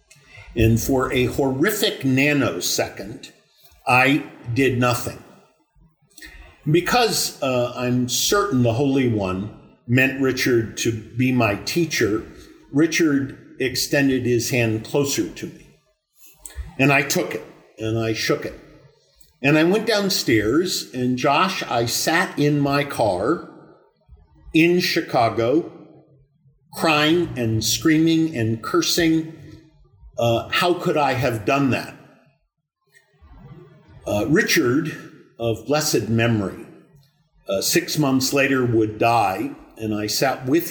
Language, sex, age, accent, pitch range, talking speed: English, male, 50-69, American, 115-160 Hz, 110 wpm